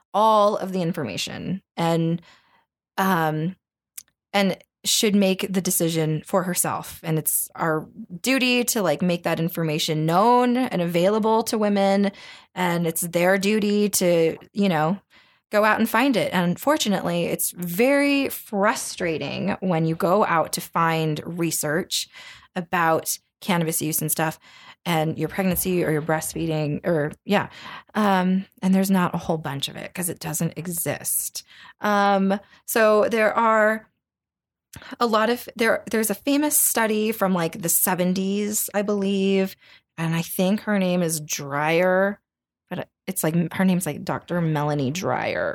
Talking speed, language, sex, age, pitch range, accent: 145 wpm, English, female, 20-39, 165-210 Hz, American